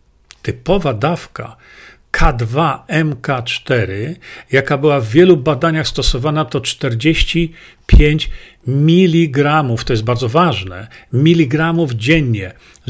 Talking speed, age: 90 wpm, 50-69